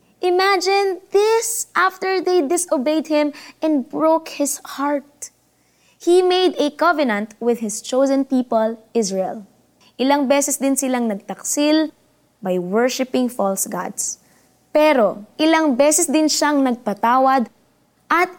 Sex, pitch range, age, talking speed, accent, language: female, 215-305 Hz, 20-39, 115 wpm, native, Filipino